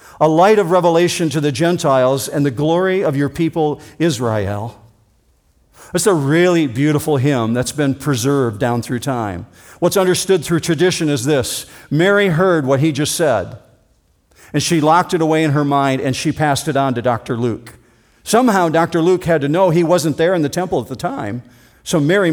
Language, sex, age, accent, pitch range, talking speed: English, male, 50-69, American, 125-165 Hz, 190 wpm